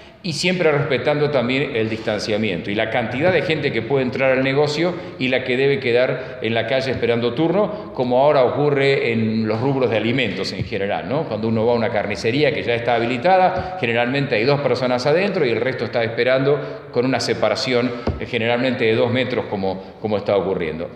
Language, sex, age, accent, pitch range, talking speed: Spanish, male, 40-59, Argentinian, 115-160 Hz, 195 wpm